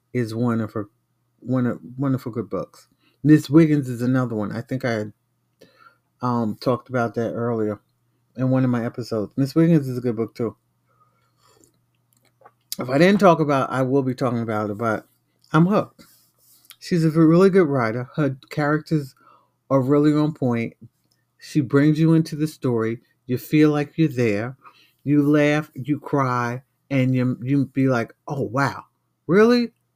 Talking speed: 165 wpm